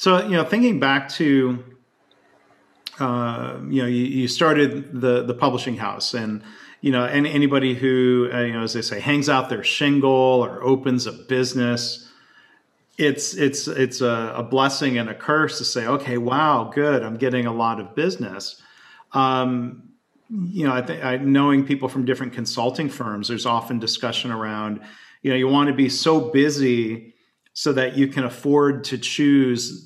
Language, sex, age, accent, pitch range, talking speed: English, male, 40-59, American, 115-135 Hz, 175 wpm